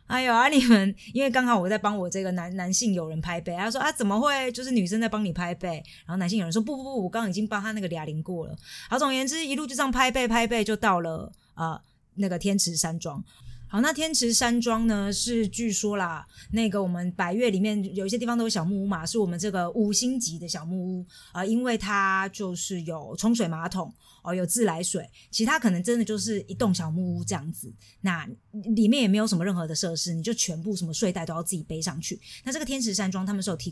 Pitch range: 175-220 Hz